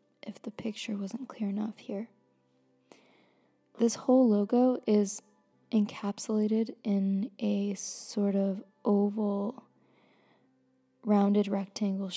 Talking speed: 95 wpm